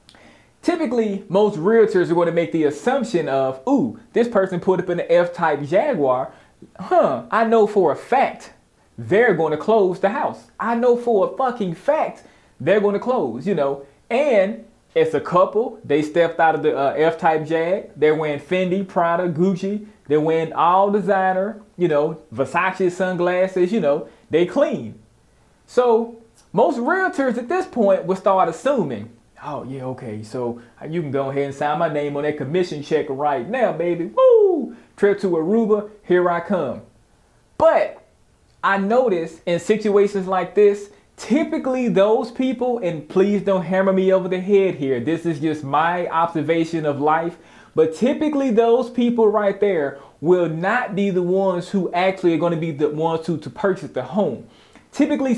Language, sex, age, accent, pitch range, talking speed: English, male, 30-49, American, 160-220 Hz, 170 wpm